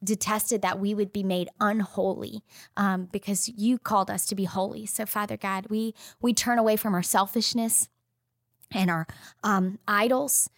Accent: American